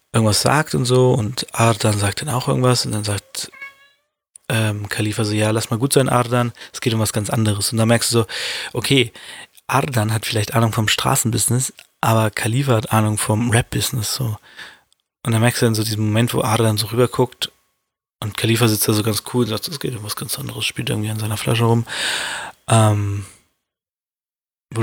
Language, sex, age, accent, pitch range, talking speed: German, male, 20-39, German, 110-125 Hz, 200 wpm